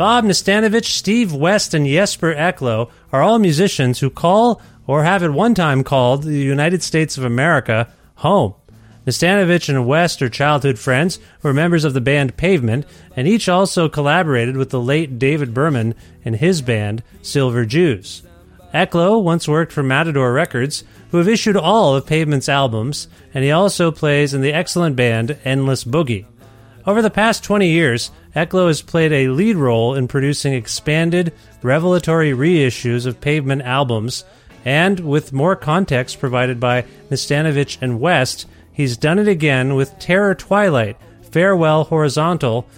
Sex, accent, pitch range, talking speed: male, American, 125-170 Hz, 155 wpm